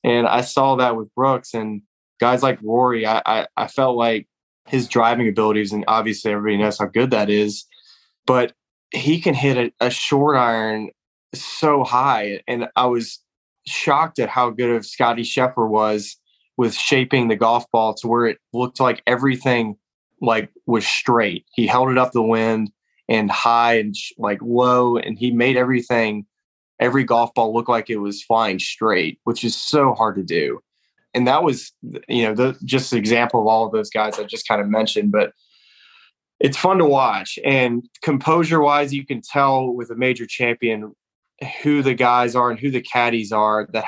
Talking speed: 185 wpm